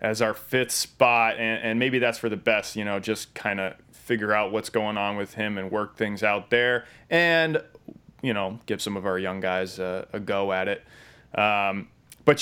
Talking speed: 215 wpm